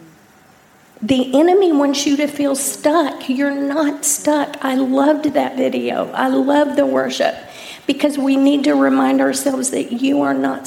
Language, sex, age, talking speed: English, female, 50-69, 160 wpm